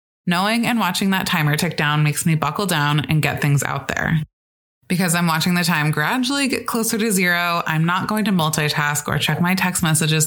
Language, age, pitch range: English, 20-39, 150-195 Hz